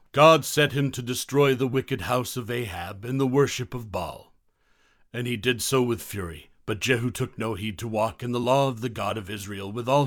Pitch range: 105-135 Hz